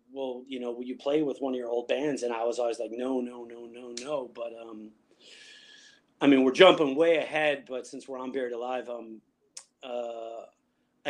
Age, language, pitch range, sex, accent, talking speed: 30-49, English, 120-140 Hz, male, American, 205 wpm